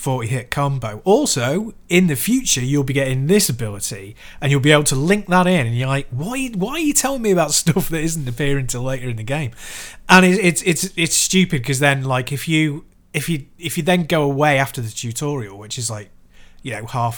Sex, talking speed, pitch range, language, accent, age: male, 225 wpm, 120-165 Hz, English, British, 30-49